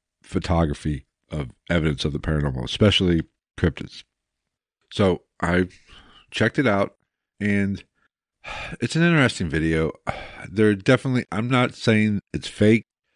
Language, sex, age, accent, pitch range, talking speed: English, male, 50-69, American, 80-105 Hz, 115 wpm